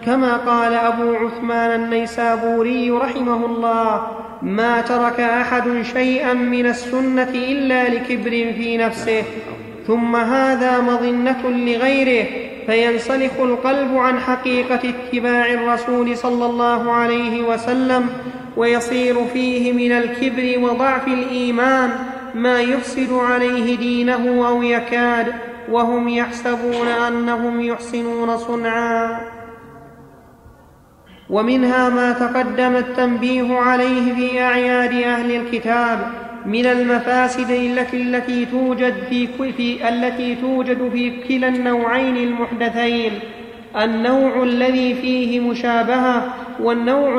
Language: Arabic